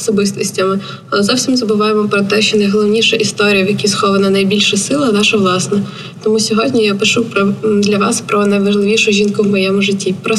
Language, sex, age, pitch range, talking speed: Ukrainian, female, 20-39, 200-220 Hz, 165 wpm